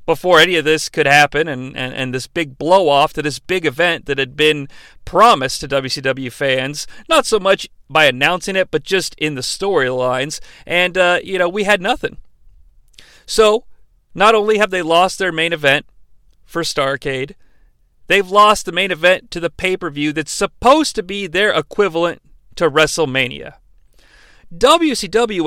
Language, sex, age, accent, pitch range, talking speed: English, male, 40-59, American, 150-215 Hz, 165 wpm